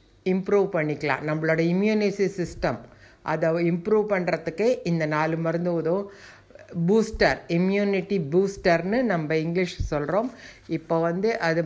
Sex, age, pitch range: female, 60-79, 150-185 Hz